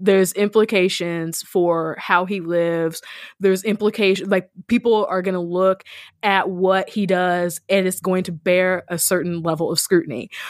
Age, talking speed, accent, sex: 20-39, 160 wpm, American, female